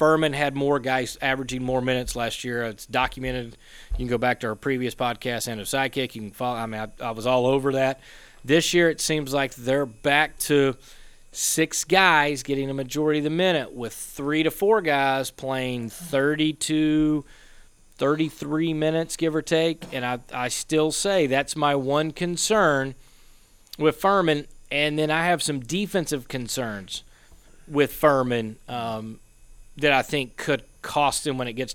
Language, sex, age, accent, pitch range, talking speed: English, male, 30-49, American, 125-155 Hz, 170 wpm